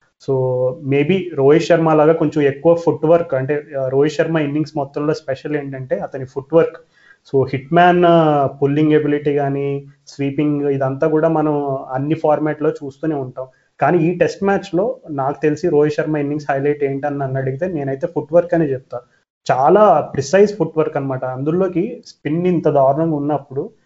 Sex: male